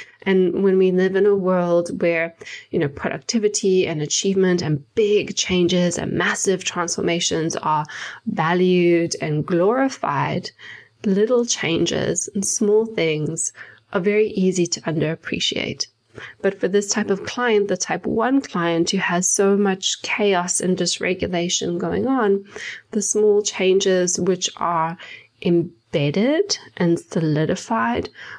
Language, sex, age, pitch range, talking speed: English, female, 20-39, 170-210 Hz, 125 wpm